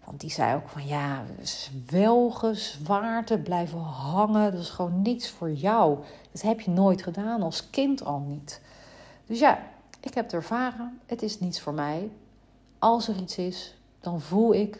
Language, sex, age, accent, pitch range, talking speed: Dutch, female, 40-59, Dutch, 150-210 Hz, 170 wpm